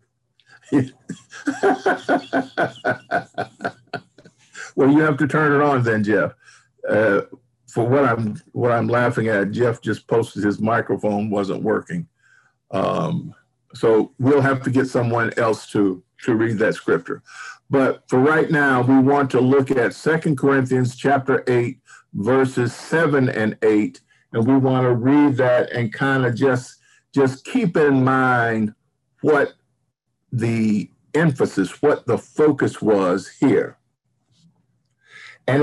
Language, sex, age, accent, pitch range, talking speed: English, male, 50-69, American, 115-150 Hz, 130 wpm